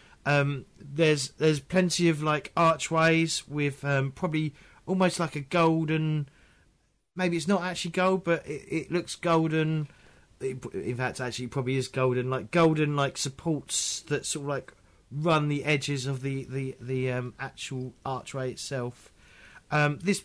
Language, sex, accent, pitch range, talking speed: English, male, British, 125-155 Hz, 150 wpm